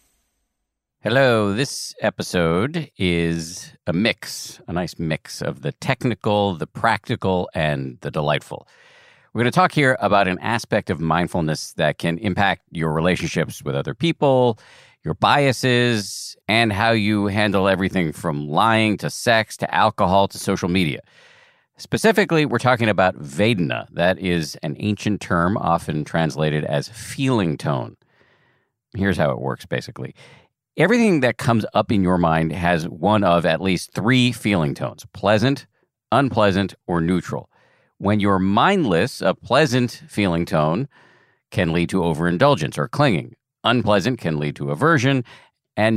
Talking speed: 140 wpm